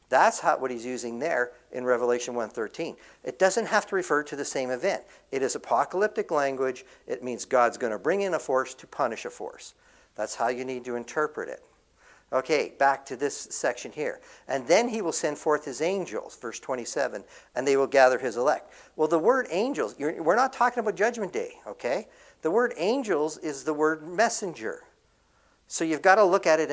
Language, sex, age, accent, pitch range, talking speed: English, male, 50-69, American, 135-215 Hz, 200 wpm